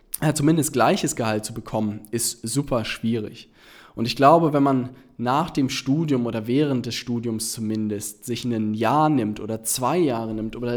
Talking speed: 175 wpm